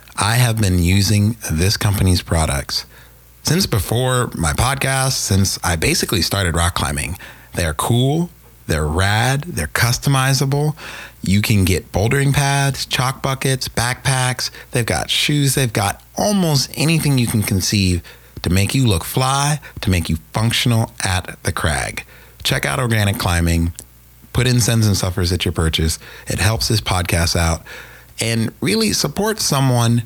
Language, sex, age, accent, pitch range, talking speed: English, male, 30-49, American, 85-120 Hz, 150 wpm